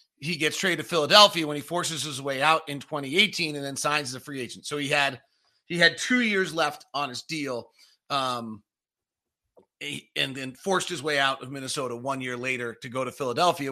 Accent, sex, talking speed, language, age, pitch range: American, male, 205 wpm, English, 40-59, 125-170 Hz